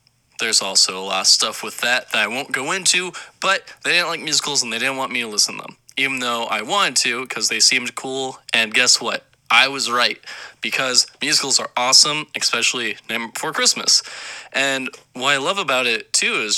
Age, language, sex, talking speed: 20-39, English, male, 210 wpm